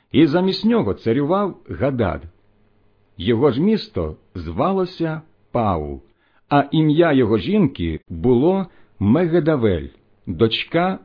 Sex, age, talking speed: male, 50-69, 90 wpm